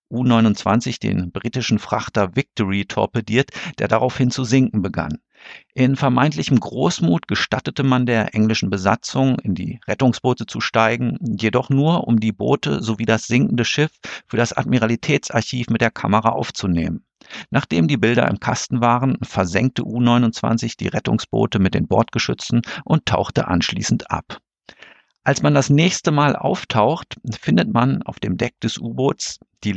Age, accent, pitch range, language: 50-69, German, 105-130 Hz, German